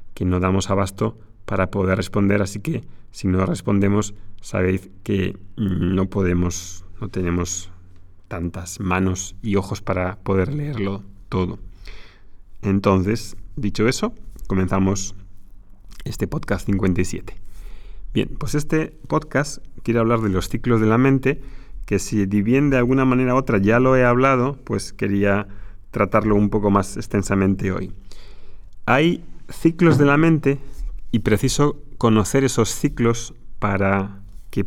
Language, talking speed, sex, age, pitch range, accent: Spanish, 135 wpm, male, 30-49, 95-125 Hz, Spanish